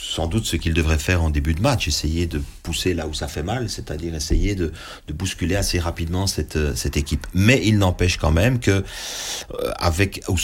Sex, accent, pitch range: male, French, 80-95 Hz